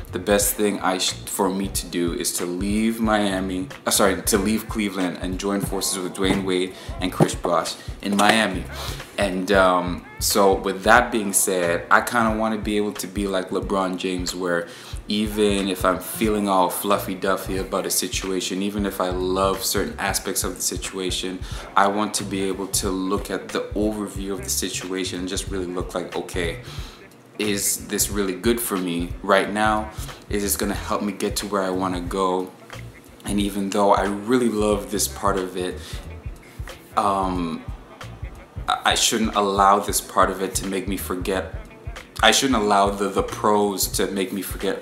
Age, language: 20-39, English